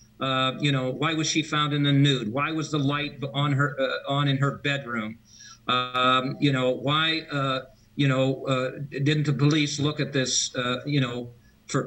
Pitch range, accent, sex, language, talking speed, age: 125-145 Hz, American, male, English, 195 wpm, 50-69